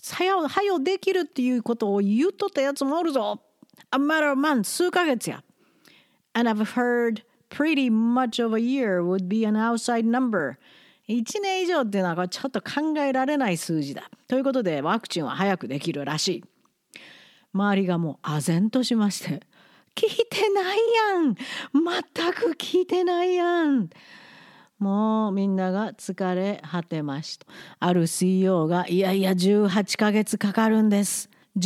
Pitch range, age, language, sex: 195-285 Hz, 40-59, Japanese, female